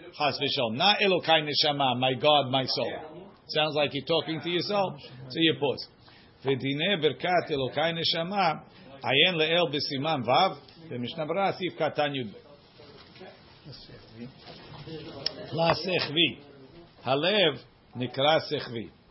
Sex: male